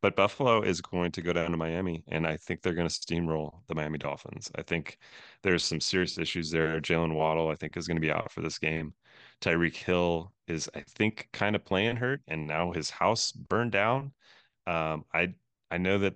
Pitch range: 80-95 Hz